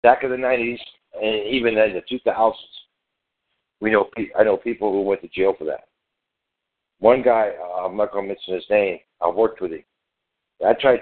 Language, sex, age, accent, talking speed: English, male, 60-79, American, 195 wpm